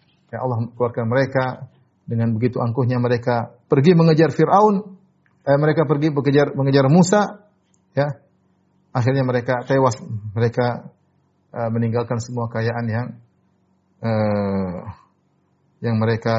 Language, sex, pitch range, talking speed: Indonesian, male, 105-135 Hz, 115 wpm